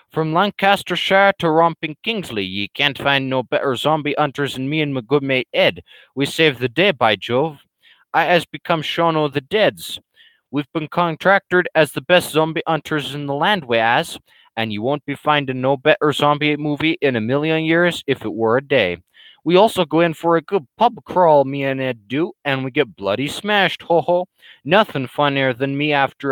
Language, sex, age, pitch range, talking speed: English, male, 20-39, 140-175 Hz, 195 wpm